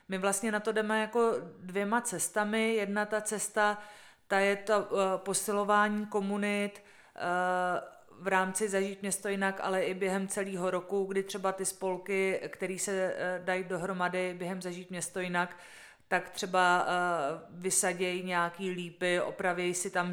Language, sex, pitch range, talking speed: Czech, female, 180-195 Hz, 140 wpm